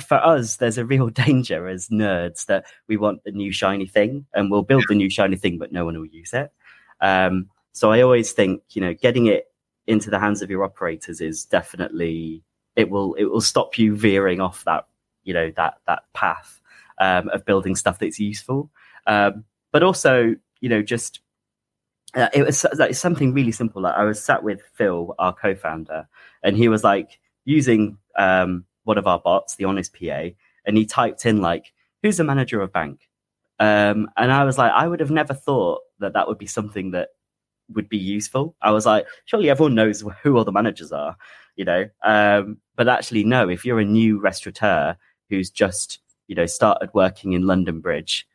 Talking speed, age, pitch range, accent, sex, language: 200 wpm, 20-39, 95-120 Hz, British, male, English